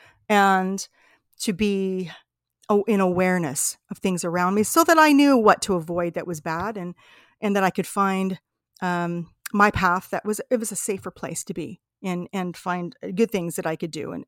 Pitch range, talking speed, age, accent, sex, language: 175-210 Hz, 200 wpm, 40-59, American, female, English